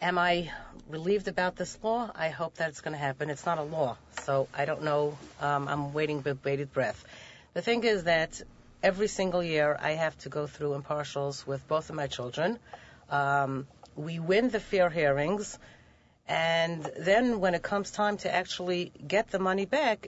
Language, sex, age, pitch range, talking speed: English, female, 40-59, 150-195 Hz, 190 wpm